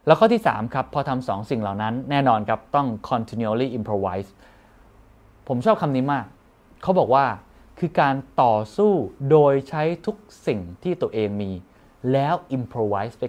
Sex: male